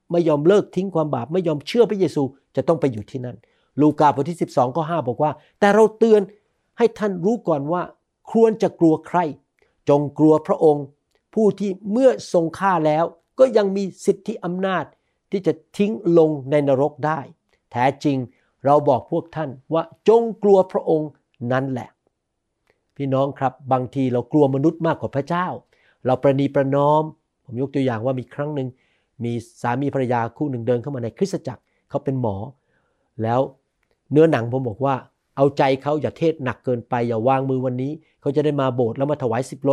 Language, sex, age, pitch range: Thai, male, 60-79, 130-175 Hz